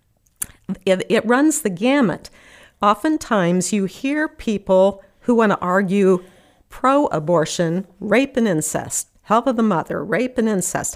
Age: 50-69